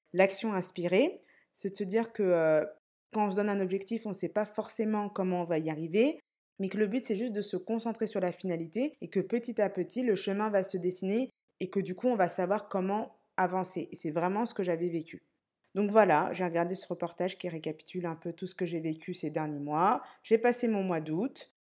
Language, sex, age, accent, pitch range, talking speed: French, female, 20-39, French, 180-225 Hz, 235 wpm